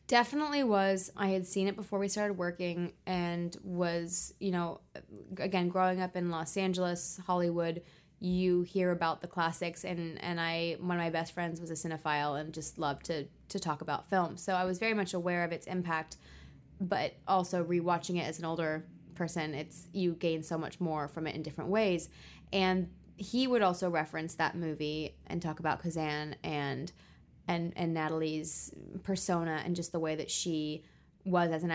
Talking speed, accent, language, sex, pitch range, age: 185 wpm, American, English, female, 160-185 Hz, 20-39